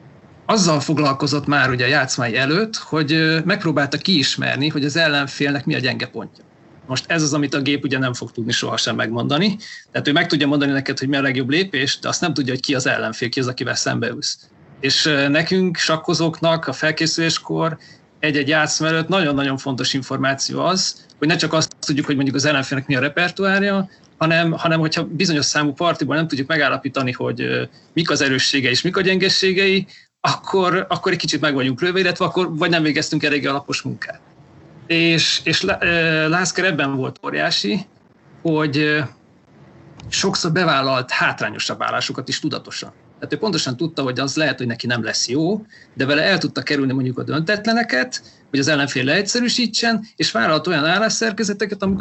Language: Hungarian